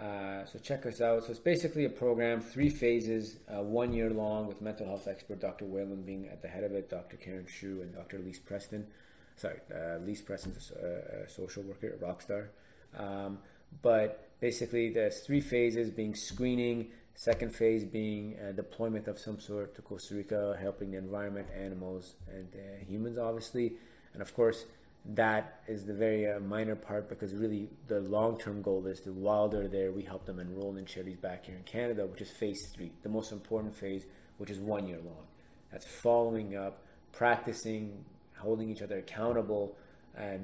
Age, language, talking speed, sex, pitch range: 30-49, English, 185 wpm, male, 100-115 Hz